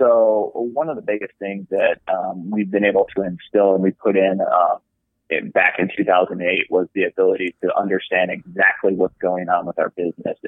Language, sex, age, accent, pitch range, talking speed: English, male, 30-49, American, 95-120 Hz, 195 wpm